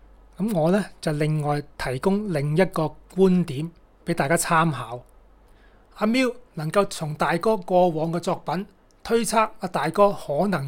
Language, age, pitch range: Chinese, 30-49, 160-205 Hz